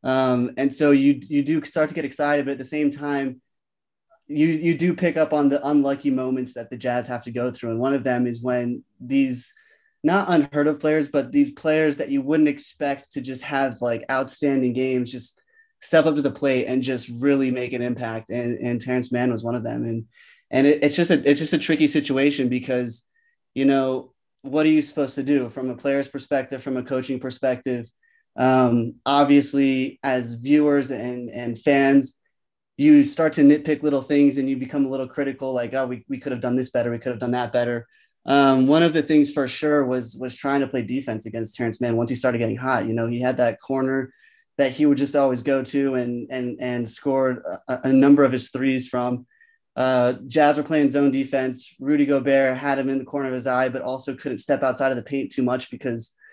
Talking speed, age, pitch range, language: 225 wpm, 20-39, 125-145 Hz, English